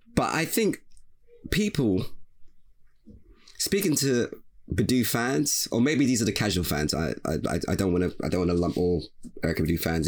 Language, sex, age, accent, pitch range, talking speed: English, male, 20-39, British, 100-135 Hz, 180 wpm